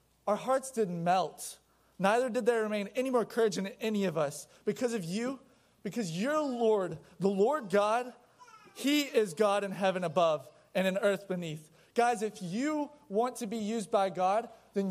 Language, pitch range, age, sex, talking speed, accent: English, 195-245 Hz, 20-39, male, 175 wpm, American